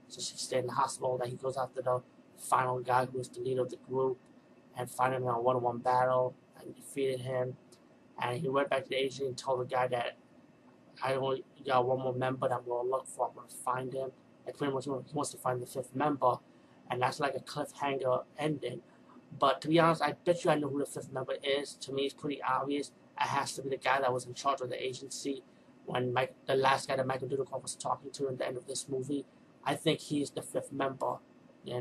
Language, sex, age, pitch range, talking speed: English, male, 20-39, 125-140 Hz, 245 wpm